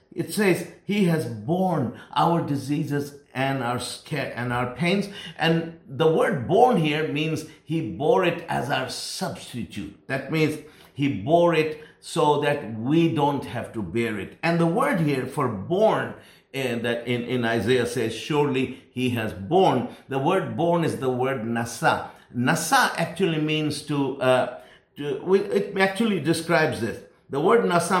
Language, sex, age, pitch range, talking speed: English, male, 50-69, 130-170 Hz, 155 wpm